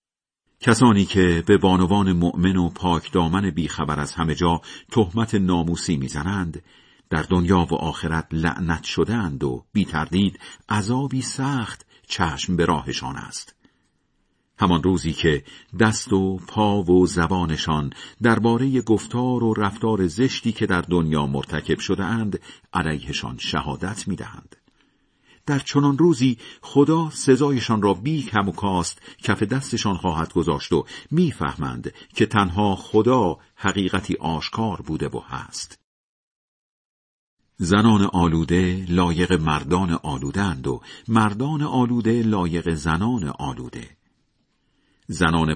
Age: 50-69